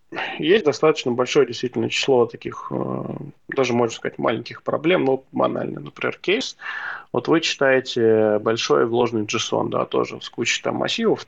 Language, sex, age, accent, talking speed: Russian, male, 20-39, native, 155 wpm